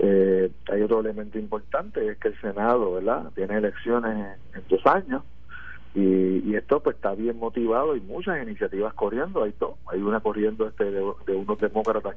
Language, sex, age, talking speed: Spanish, male, 50-69, 180 wpm